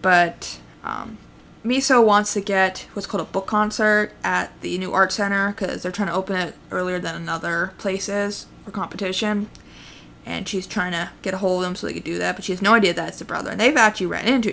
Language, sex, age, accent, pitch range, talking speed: English, female, 20-39, American, 175-210 Hz, 235 wpm